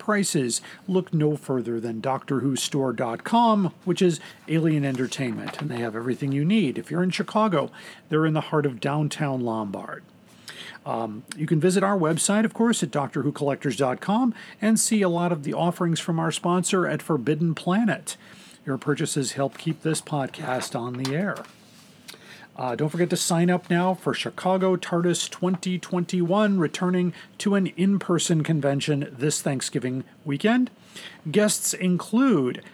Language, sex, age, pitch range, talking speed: English, male, 40-59, 140-185 Hz, 145 wpm